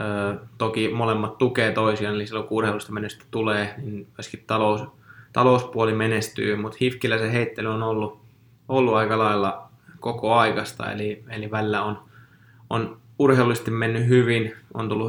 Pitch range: 105-115 Hz